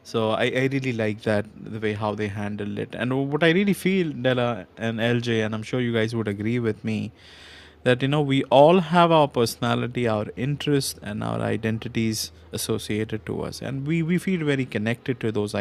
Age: 20-39